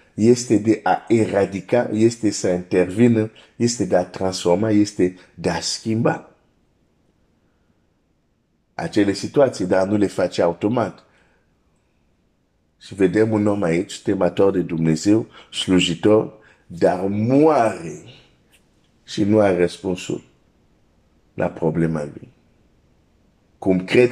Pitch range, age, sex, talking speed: 90-110 Hz, 50-69, male, 100 wpm